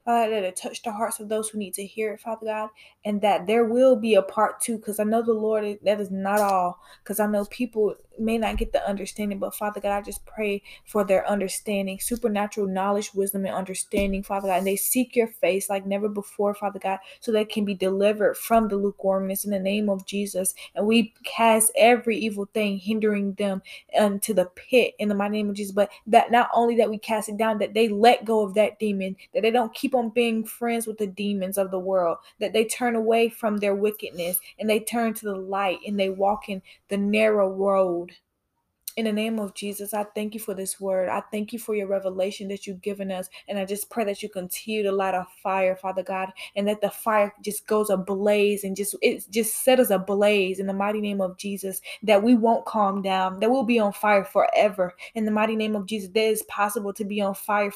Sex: female